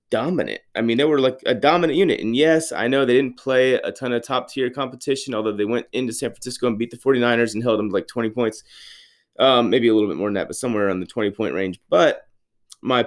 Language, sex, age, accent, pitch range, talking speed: English, male, 30-49, American, 105-135 Hz, 255 wpm